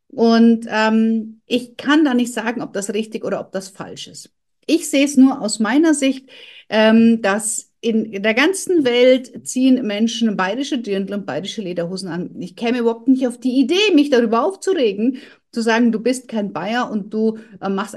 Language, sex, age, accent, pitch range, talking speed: German, female, 50-69, German, 210-265 Hz, 190 wpm